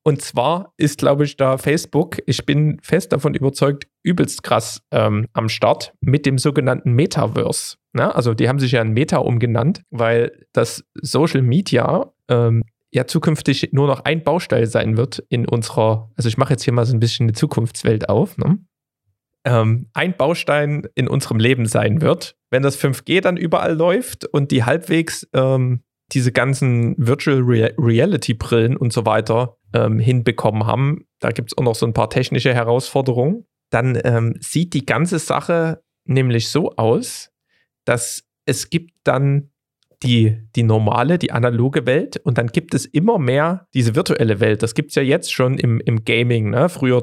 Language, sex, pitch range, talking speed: German, male, 120-150 Hz, 175 wpm